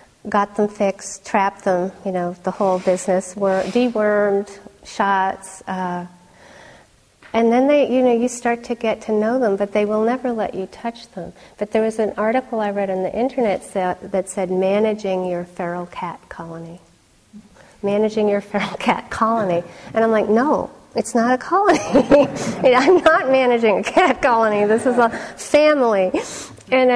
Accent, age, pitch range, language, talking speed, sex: American, 40-59, 195-255 Hz, English, 170 wpm, female